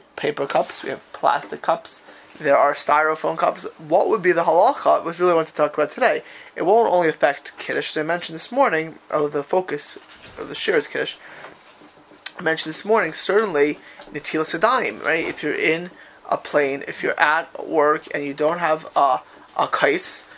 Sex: male